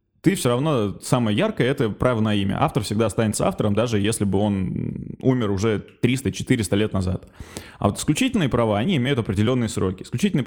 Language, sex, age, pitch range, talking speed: Russian, male, 20-39, 105-130 Hz, 185 wpm